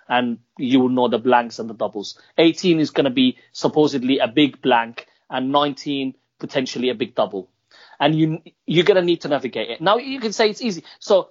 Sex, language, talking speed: male, English, 210 wpm